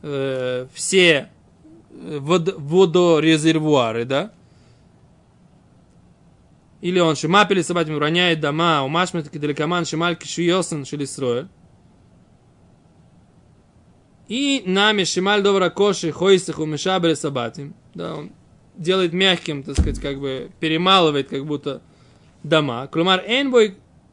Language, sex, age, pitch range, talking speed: Russian, male, 20-39, 150-185 Hz, 95 wpm